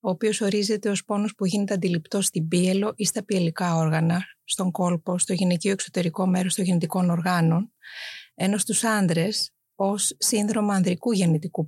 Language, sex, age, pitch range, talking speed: Greek, female, 30-49, 175-210 Hz, 150 wpm